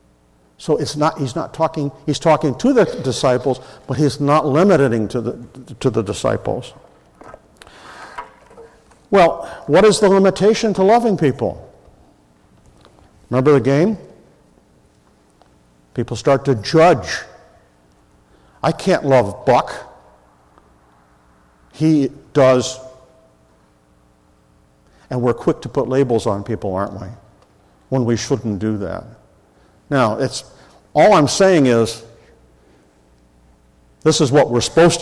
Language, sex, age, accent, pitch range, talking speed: English, male, 50-69, American, 95-140 Hz, 115 wpm